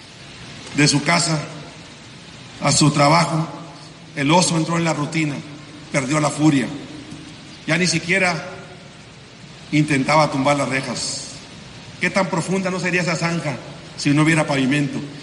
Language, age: Spanish, 50-69